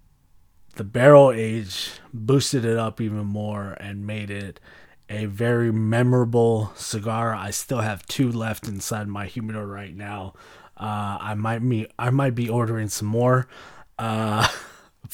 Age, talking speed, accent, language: 20-39, 145 wpm, American, English